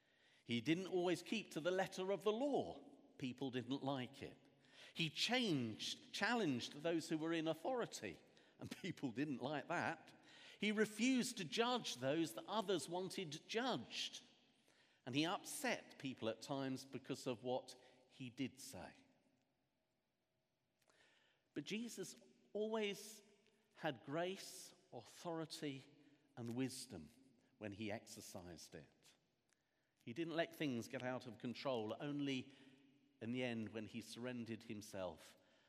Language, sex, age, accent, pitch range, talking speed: English, male, 50-69, British, 120-170 Hz, 130 wpm